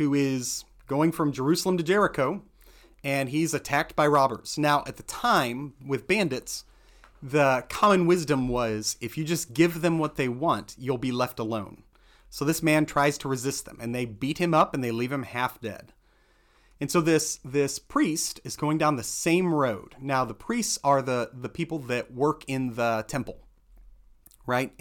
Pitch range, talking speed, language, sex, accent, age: 130-170 Hz, 185 wpm, English, male, American, 30-49